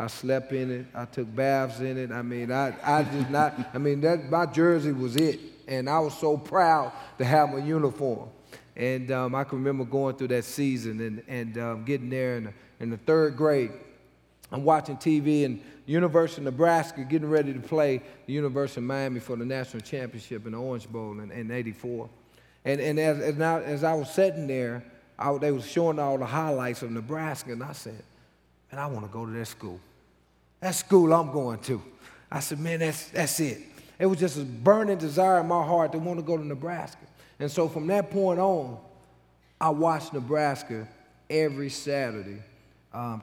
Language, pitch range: English, 115-150 Hz